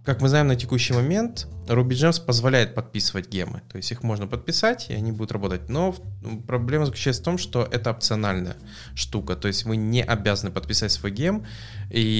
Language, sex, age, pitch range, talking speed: English, male, 20-39, 100-120 Hz, 180 wpm